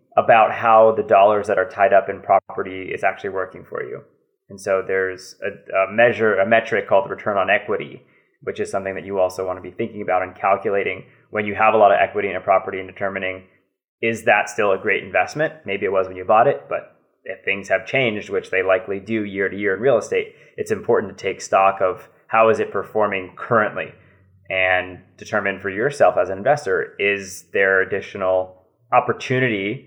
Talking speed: 205 wpm